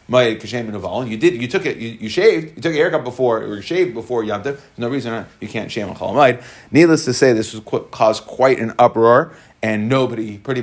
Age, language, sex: 40-59, English, male